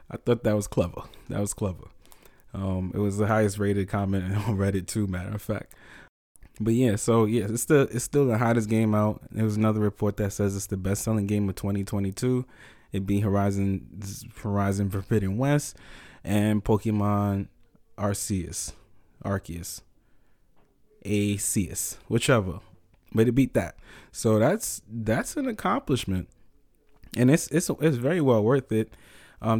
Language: English